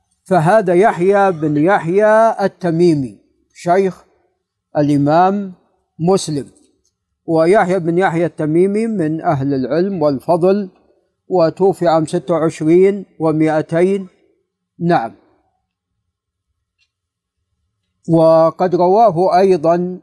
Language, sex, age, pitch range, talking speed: Arabic, male, 50-69, 150-185 Hz, 75 wpm